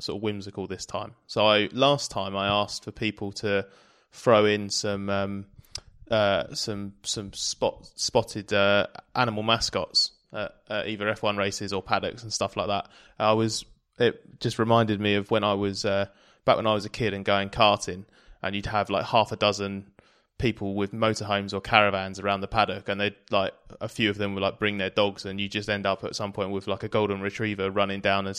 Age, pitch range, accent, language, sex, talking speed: 20-39, 100-110 Hz, British, English, male, 210 wpm